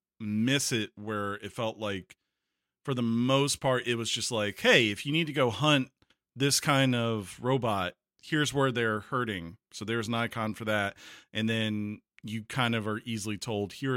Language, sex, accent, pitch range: English, male, American, 100-125 Hz